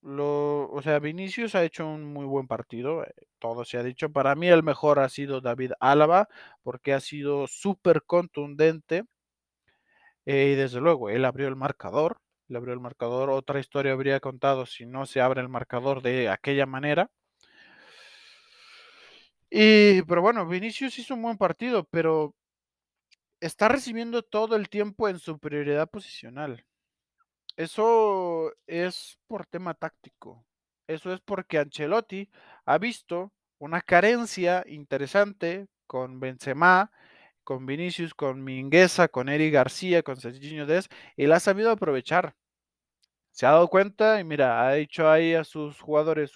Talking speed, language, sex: 145 wpm, Spanish, male